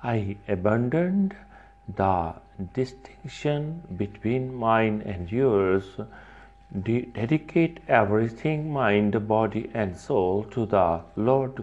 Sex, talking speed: male, 95 wpm